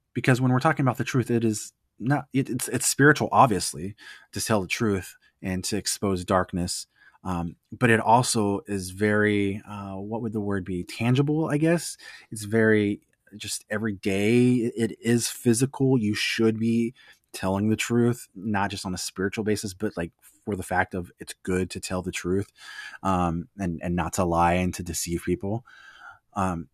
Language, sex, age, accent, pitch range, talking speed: English, male, 20-39, American, 95-120 Hz, 175 wpm